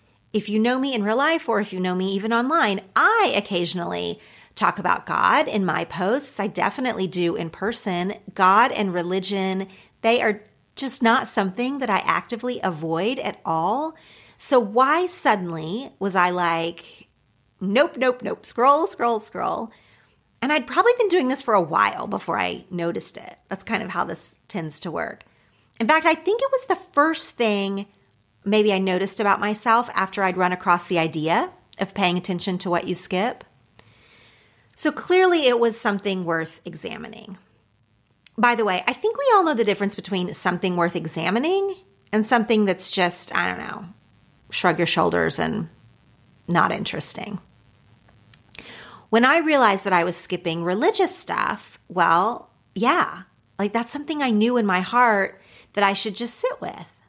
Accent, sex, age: American, female, 40-59